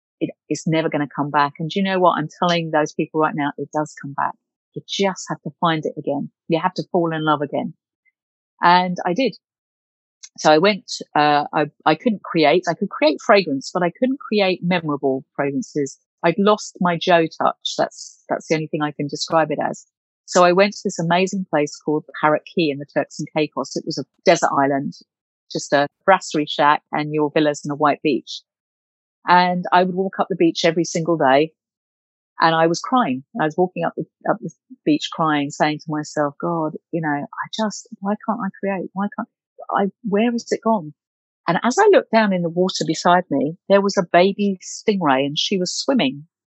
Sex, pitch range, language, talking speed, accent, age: female, 150-200 Hz, English, 210 wpm, British, 40-59